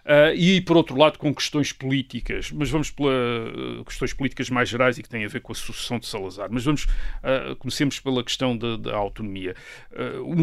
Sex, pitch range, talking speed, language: male, 120-155 Hz, 205 wpm, Portuguese